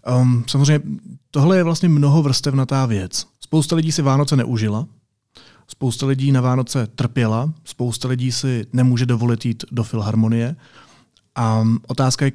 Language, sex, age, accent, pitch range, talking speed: Czech, male, 30-49, native, 115-145 Hz, 135 wpm